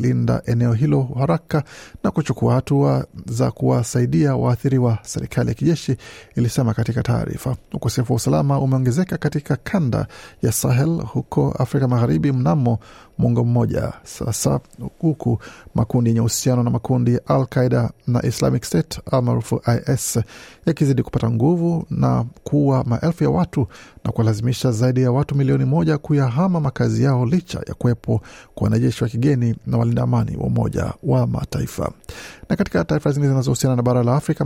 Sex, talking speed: male, 145 wpm